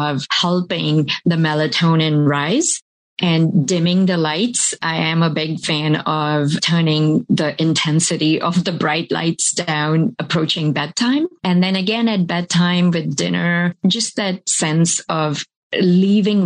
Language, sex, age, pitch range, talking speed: English, female, 30-49, 155-185 Hz, 135 wpm